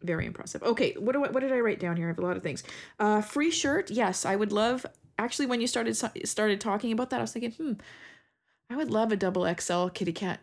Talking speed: 260 wpm